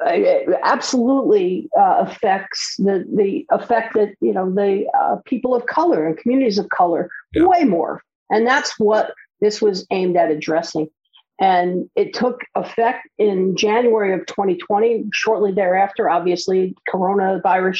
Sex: female